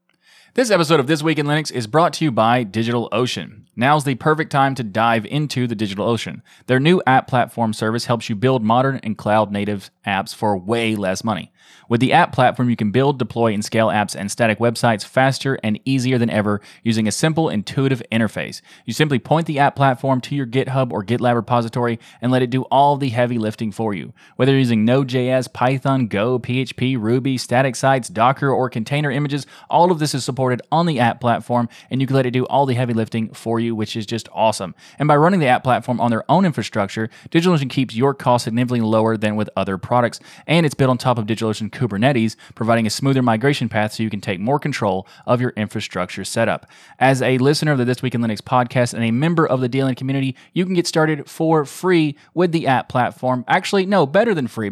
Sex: male